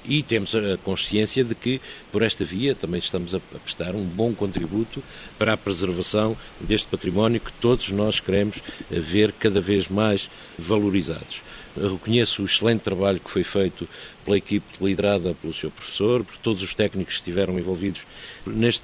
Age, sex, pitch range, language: 50-69, male, 95-115 Hz, Portuguese